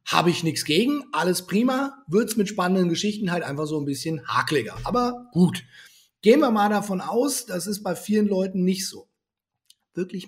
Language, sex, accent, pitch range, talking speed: German, male, German, 160-210 Hz, 185 wpm